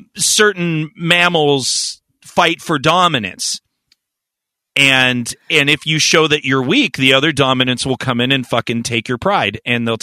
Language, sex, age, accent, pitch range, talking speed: English, male, 40-59, American, 125-175 Hz, 155 wpm